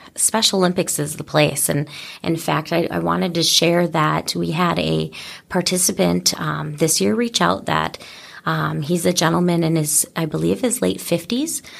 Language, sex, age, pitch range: English, female, 30-49, 155-195 Hz